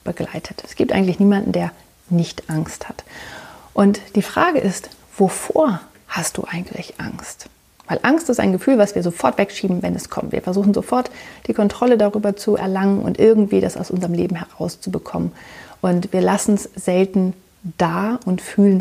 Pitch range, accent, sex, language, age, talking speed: 175-210 Hz, German, female, German, 30-49, 165 wpm